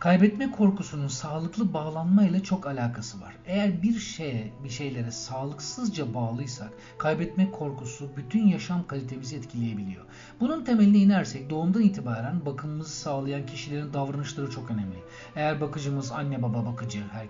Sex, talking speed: male, 130 wpm